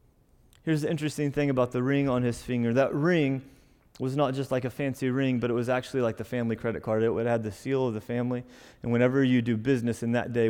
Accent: American